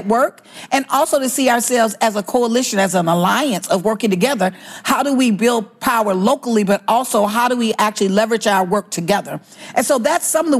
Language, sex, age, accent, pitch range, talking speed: English, female, 40-59, American, 205-250 Hz, 210 wpm